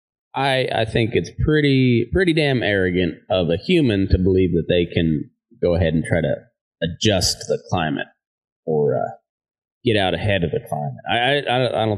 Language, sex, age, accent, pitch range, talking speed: English, male, 30-49, American, 90-115 Hz, 180 wpm